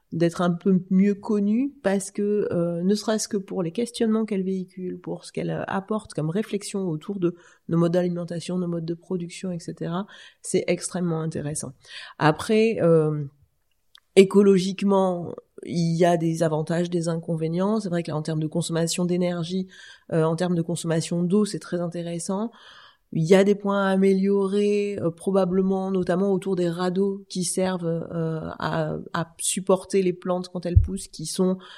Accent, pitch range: French, 165-195 Hz